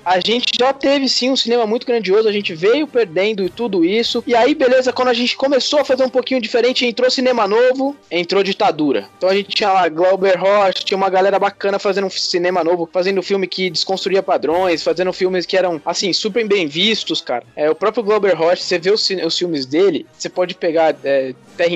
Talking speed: 220 wpm